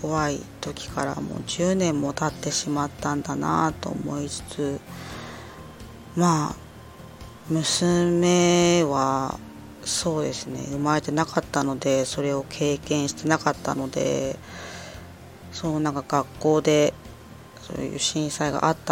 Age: 20-39